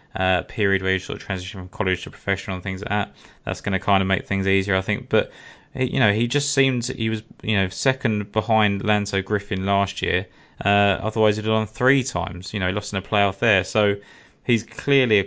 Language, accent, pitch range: English, British, 95-110 Hz